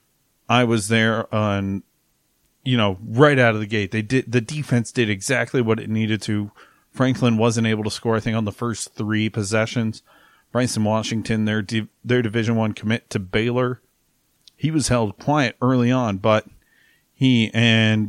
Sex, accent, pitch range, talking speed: male, American, 105-115 Hz, 175 wpm